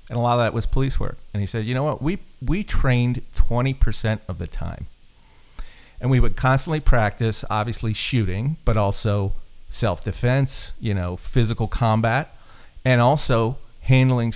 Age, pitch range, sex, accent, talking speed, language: 40-59, 100-120 Hz, male, American, 160 wpm, English